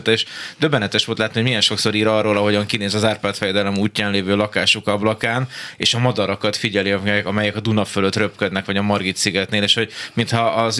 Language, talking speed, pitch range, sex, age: Hungarian, 195 wpm, 100-115 Hz, male, 20-39